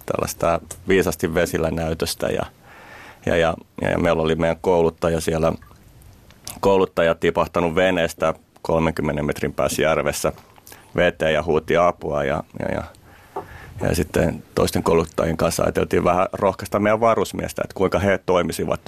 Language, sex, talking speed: Finnish, male, 130 wpm